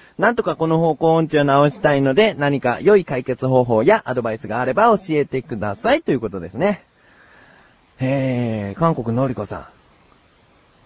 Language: Japanese